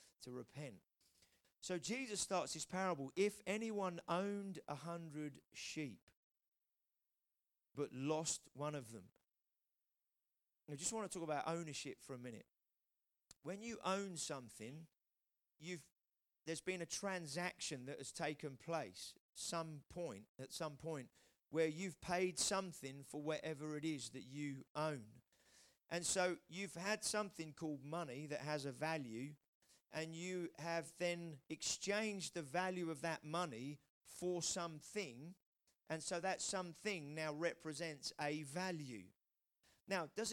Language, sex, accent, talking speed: English, male, British, 135 wpm